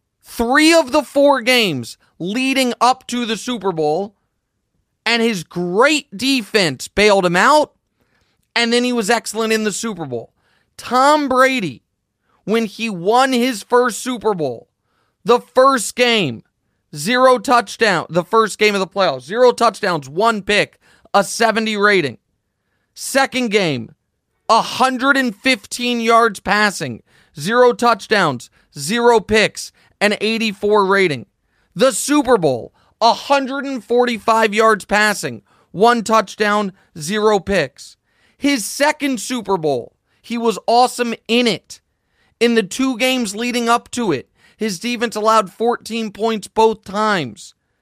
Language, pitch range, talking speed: English, 205-245 Hz, 125 wpm